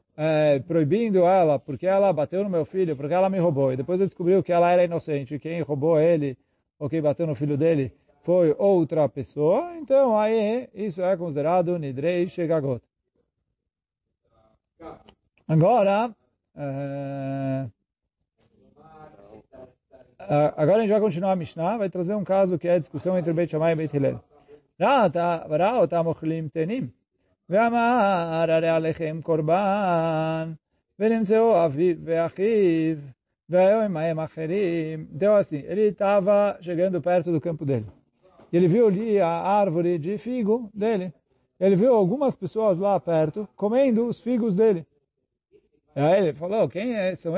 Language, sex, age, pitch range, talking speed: Portuguese, male, 40-59, 155-205 Hz, 125 wpm